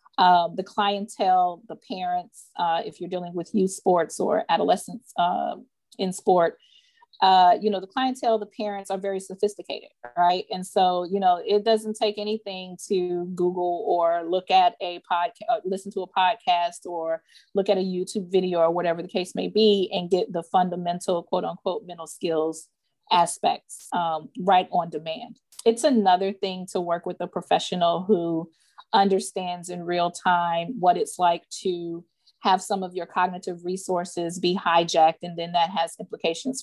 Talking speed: 165 wpm